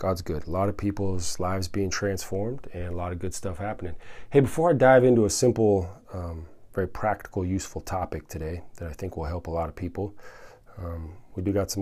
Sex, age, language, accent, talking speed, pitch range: male, 30-49, English, American, 220 wpm, 90-115 Hz